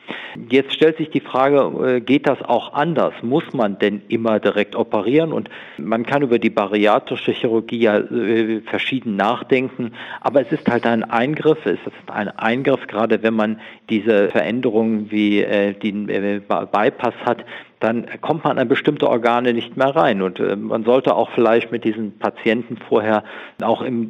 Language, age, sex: German, 50-69, male